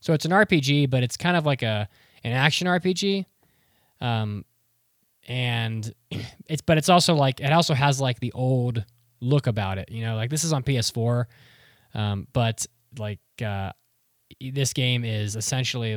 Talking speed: 165 wpm